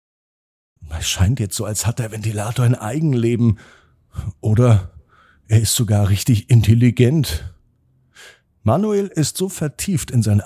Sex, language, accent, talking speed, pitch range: male, German, German, 125 wpm, 100-165 Hz